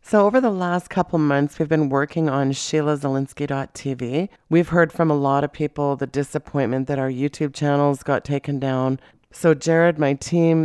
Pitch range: 135-155 Hz